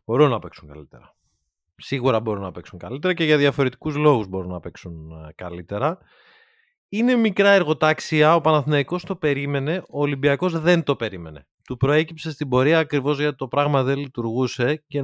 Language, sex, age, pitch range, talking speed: Greek, male, 30-49, 110-155 Hz, 160 wpm